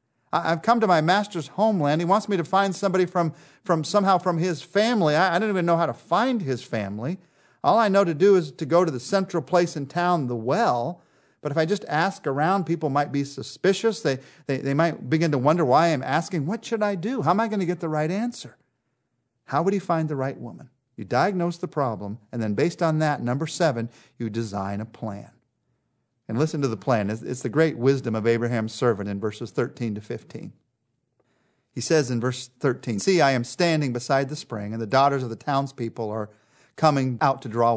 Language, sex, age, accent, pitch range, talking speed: English, male, 40-59, American, 120-175 Hz, 220 wpm